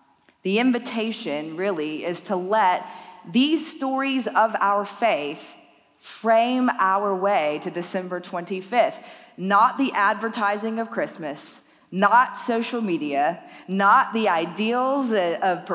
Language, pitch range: English, 180-230 Hz